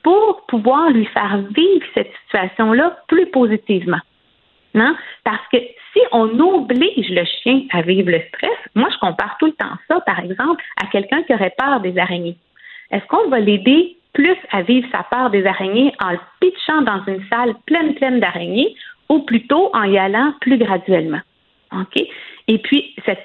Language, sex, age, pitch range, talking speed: French, female, 50-69, 200-300 Hz, 175 wpm